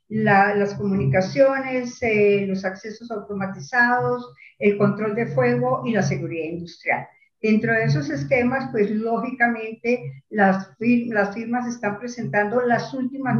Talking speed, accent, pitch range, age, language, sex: 130 wpm, American, 205-255 Hz, 50-69, Spanish, female